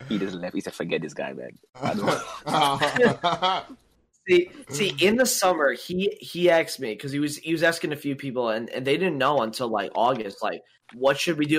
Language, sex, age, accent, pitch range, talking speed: English, male, 20-39, American, 130-165 Hz, 205 wpm